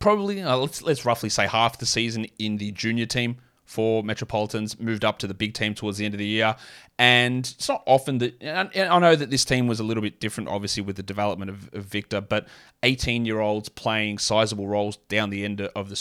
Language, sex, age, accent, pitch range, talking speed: English, male, 20-39, Australian, 100-115 Hz, 225 wpm